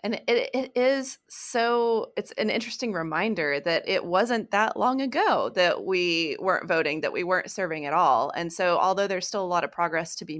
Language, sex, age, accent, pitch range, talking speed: English, female, 20-39, American, 175-240 Hz, 210 wpm